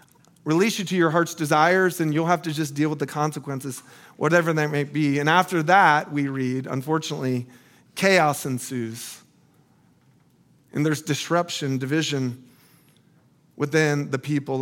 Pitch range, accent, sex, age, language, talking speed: 145-175 Hz, American, male, 40-59, English, 140 wpm